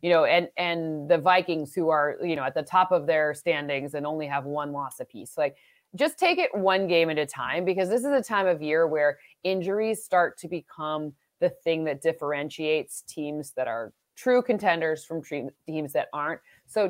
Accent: American